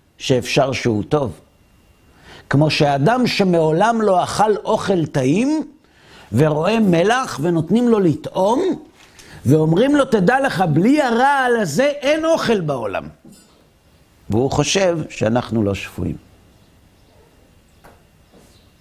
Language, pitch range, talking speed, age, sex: Hebrew, 100-155 Hz, 95 wpm, 50-69, male